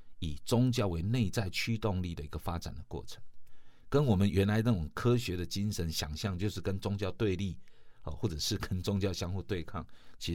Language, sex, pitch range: Chinese, male, 90-115 Hz